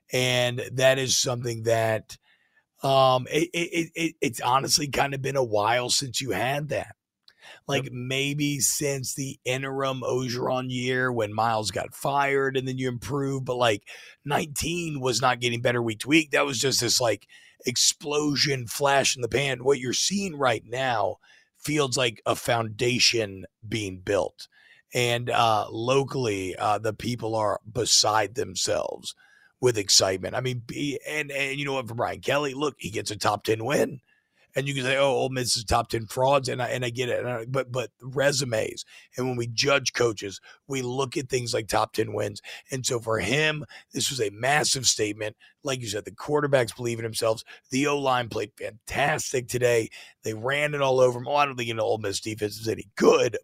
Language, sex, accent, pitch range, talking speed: English, male, American, 115-140 Hz, 185 wpm